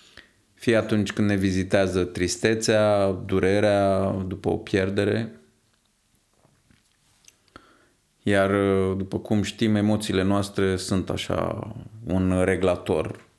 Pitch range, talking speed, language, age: 95-110 Hz, 90 wpm, Romanian, 20-39